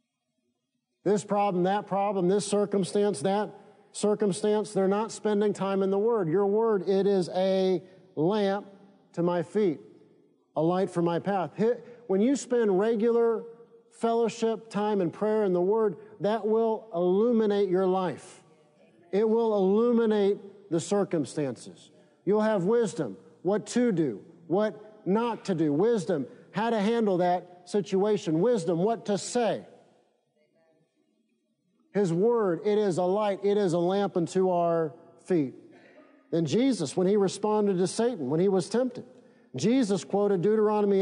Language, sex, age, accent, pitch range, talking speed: English, male, 50-69, American, 180-215 Hz, 140 wpm